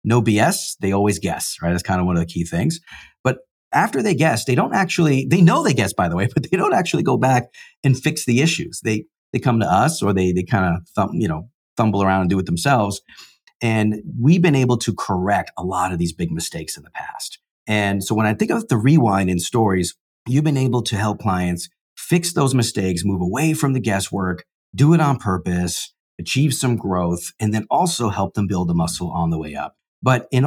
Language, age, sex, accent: English, 40-59, male, American